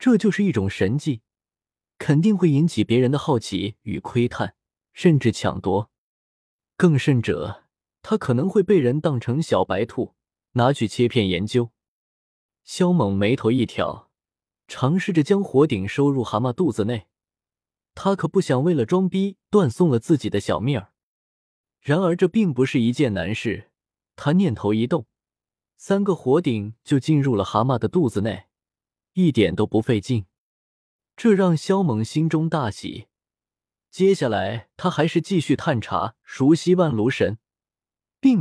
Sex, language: male, Chinese